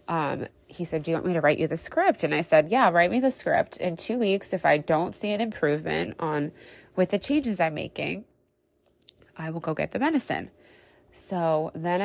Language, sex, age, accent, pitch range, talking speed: English, female, 20-39, American, 160-195 Hz, 215 wpm